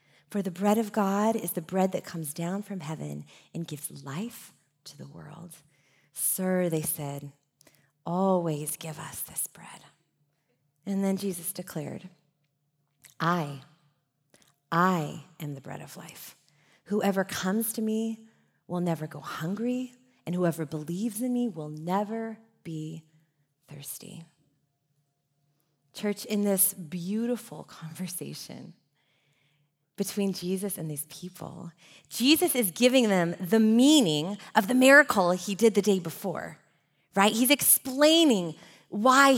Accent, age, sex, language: American, 30-49, female, English